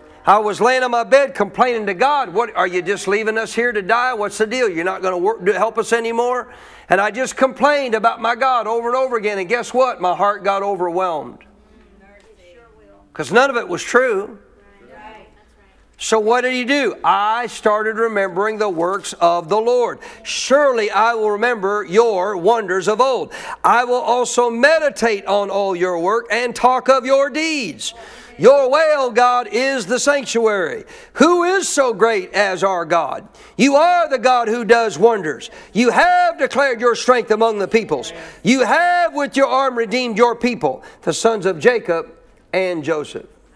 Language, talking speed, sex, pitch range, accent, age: English, 175 wpm, male, 205-265 Hz, American, 50-69